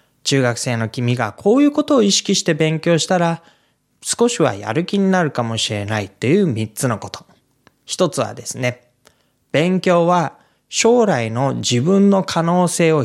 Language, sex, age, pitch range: Japanese, male, 20-39, 120-175 Hz